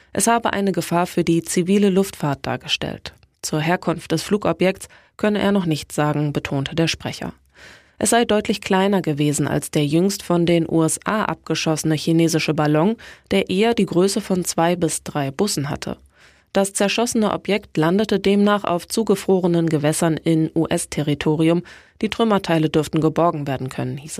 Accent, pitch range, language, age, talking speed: German, 155-195 Hz, German, 20-39, 155 wpm